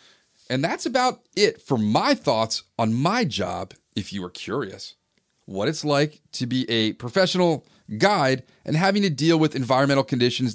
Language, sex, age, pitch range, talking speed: English, male, 30-49, 115-160 Hz, 165 wpm